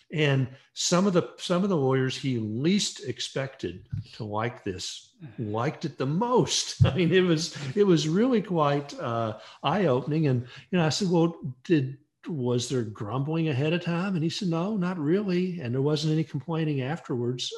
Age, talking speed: 50-69, 185 wpm